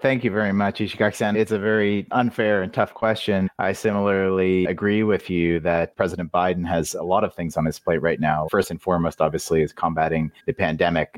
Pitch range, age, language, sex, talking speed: 85-100 Hz, 30-49, English, male, 205 wpm